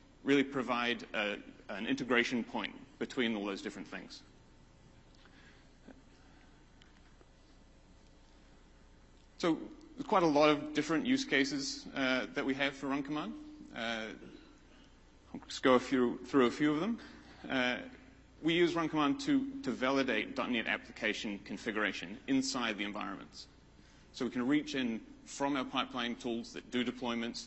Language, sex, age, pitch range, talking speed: English, male, 30-49, 110-165 Hz, 140 wpm